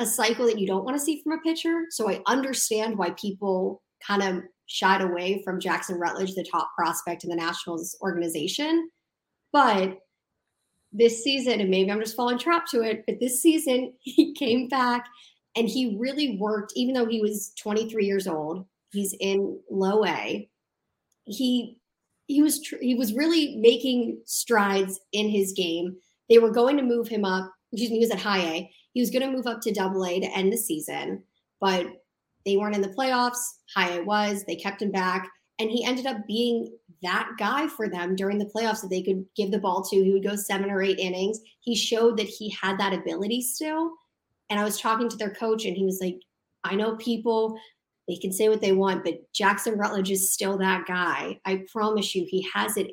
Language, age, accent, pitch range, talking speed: English, 30-49, American, 190-235 Hz, 200 wpm